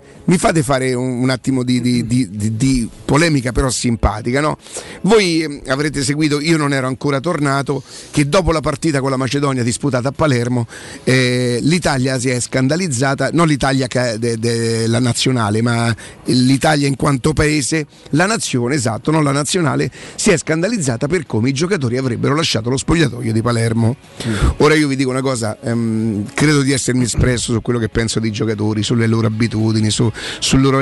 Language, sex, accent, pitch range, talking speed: Italian, male, native, 120-150 Hz, 175 wpm